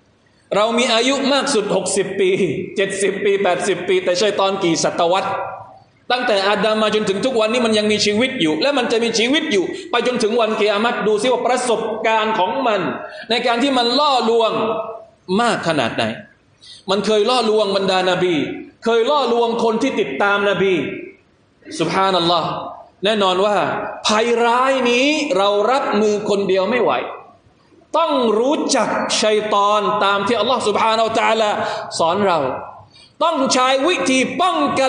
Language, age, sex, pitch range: Thai, 20-39, male, 195-255 Hz